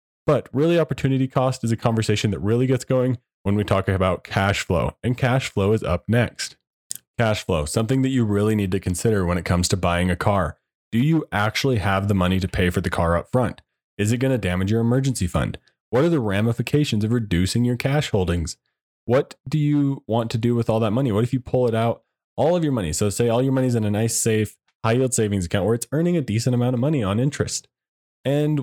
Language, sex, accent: English, male, American